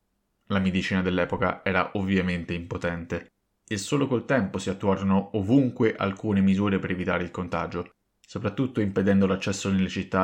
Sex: male